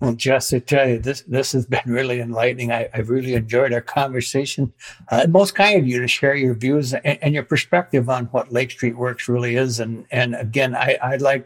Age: 60-79